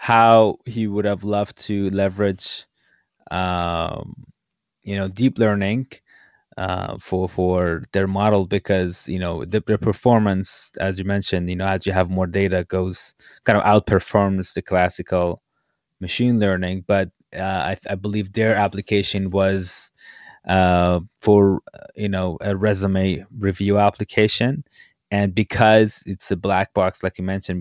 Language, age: English, 20-39